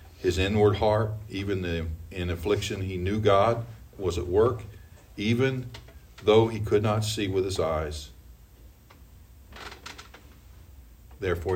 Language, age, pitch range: English, 50-69, 85-105 Hz